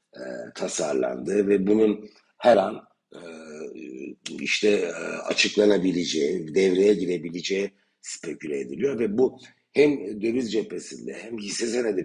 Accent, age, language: native, 60-79, Turkish